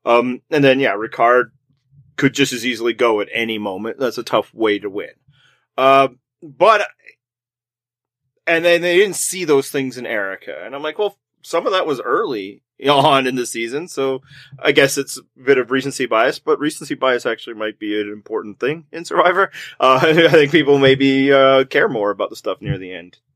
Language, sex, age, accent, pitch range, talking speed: English, male, 30-49, American, 125-175 Hz, 200 wpm